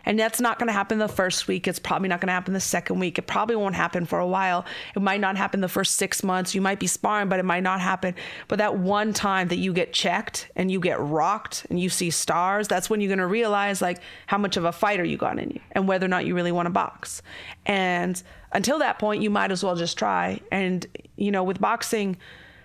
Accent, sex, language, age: American, female, English, 30-49